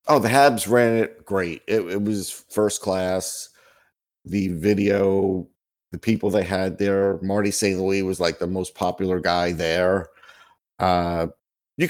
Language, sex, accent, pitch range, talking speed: English, male, American, 95-110 Hz, 150 wpm